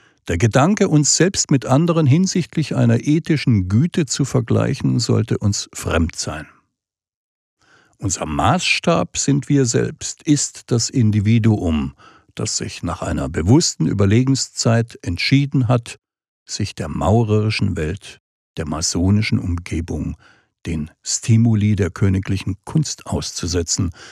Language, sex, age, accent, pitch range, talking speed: German, male, 60-79, German, 100-135 Hz, 110 wpm